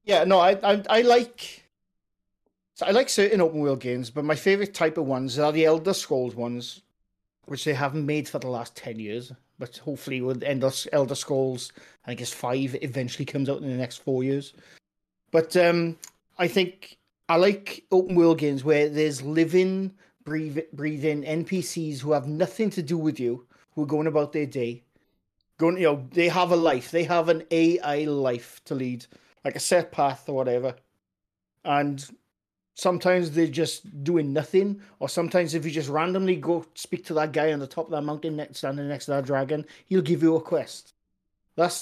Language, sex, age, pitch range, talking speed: English, male, 30-49, 135-175 Hz, 190 wpm